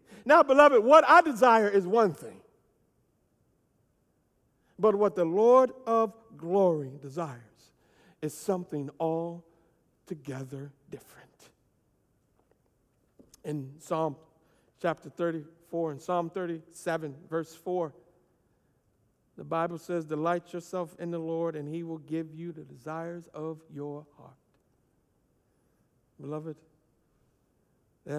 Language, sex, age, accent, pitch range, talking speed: English, male, 60-79, American, 130-165 Hz, 105 wpm